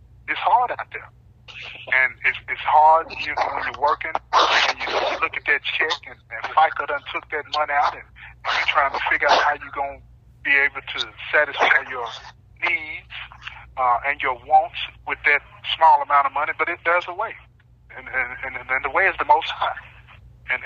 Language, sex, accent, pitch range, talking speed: English, male, American, 140-195 Hz, 205 wpm